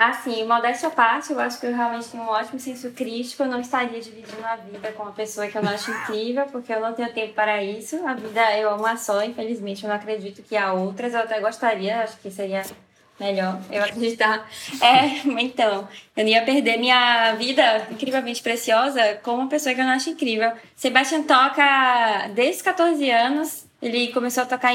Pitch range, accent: 225-270 Hz, Brazilian